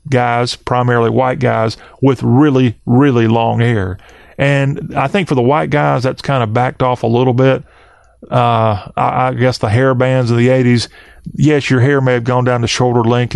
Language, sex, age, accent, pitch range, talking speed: English, male, 30-49, American, 120-140 Hz, 200 wpm